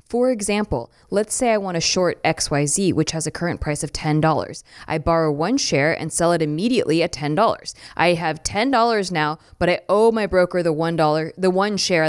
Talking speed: 195 wpm